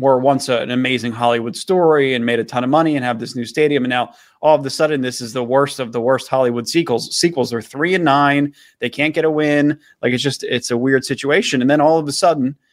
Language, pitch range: English, 130-160 Hz